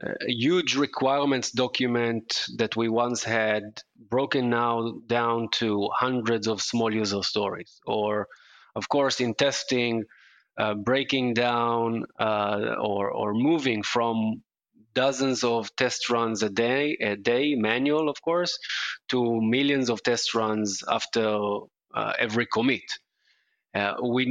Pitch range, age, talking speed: 110-130 Hz, 20-39, 130 wpm